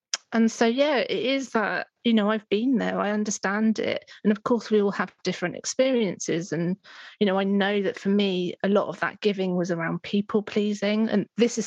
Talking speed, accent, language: 205 wpm, British, English